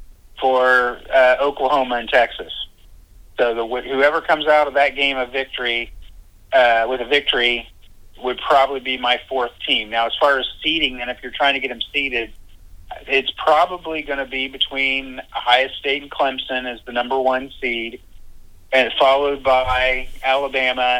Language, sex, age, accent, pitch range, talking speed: English, male, 30-49, American, 110-135 Hz, 155 wpm